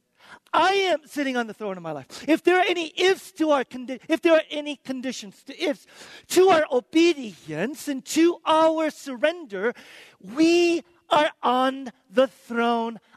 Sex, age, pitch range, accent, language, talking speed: male, 50-69, 195-290 Hz, American, English, 160 wpm